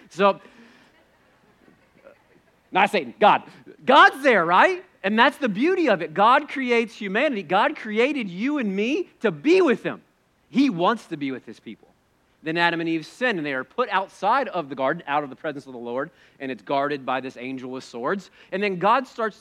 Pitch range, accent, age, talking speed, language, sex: 145-225 Hz, American, 40-59, 200 wpm, English, male